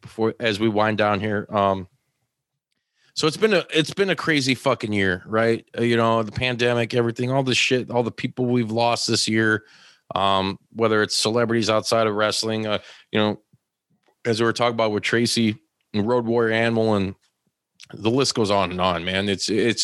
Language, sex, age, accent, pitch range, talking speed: English, male, 30-49, American, 105-130 Hz, 195 wpm